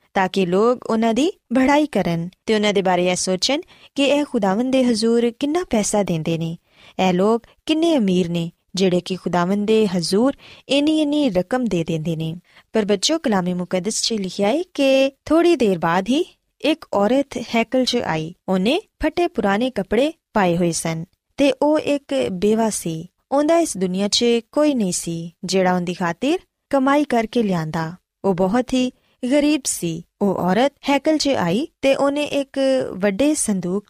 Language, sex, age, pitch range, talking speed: Punjabi, female, 20-39, 185-275 Hz, 105 wpm